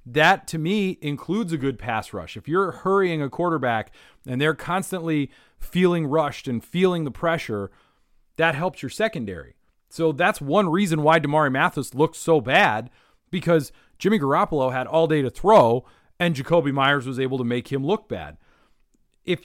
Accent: American